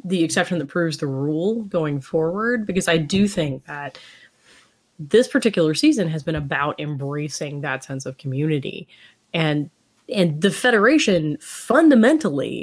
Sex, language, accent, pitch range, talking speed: female, English, American, 150-200 Hz, 140 wpm